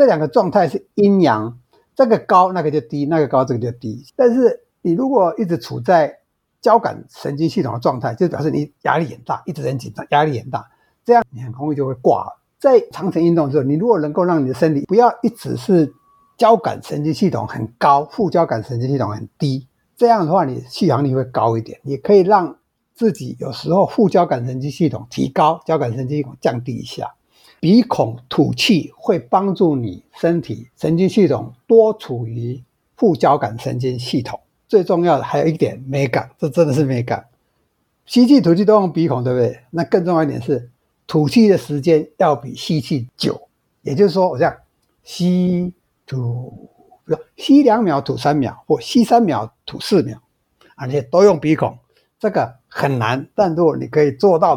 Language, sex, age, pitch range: Chinese, male, 60-79, 130-185 Hz